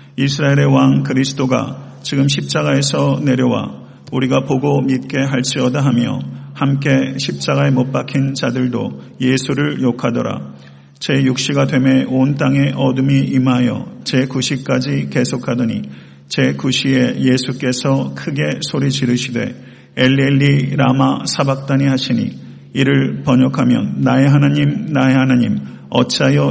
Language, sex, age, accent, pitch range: Korean, male, 50-69, native, 125-140 Hz